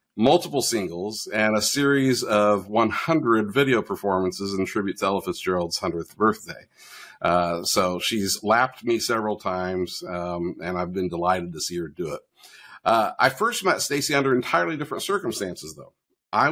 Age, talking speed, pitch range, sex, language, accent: 50-69, 160 wpm, 95-125 Hz, male, English, American